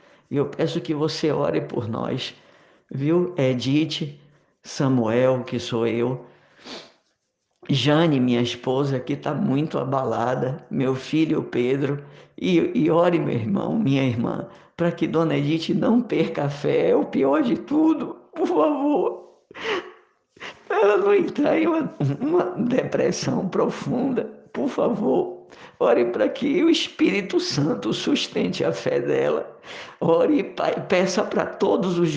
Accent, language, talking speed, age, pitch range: Brazilian, Portuguese, 130 wpm, 50-69, 135-195 Hz